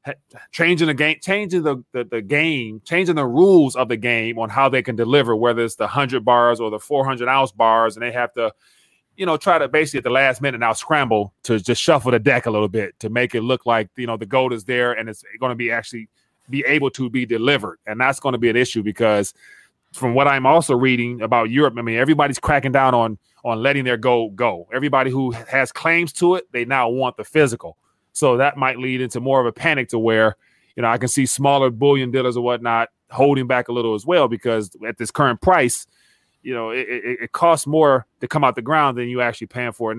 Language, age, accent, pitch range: English, 30-49, American, 115-140 Hz